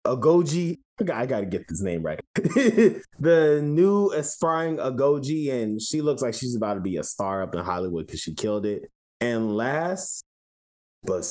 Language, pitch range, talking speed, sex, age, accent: English, 100-155 Hz, 165 wpm, male, 20-39, American